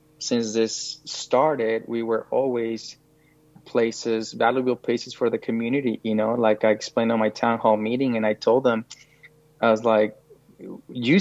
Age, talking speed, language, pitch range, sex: 20-39, 160 wpm, English, 115-140 Hz, male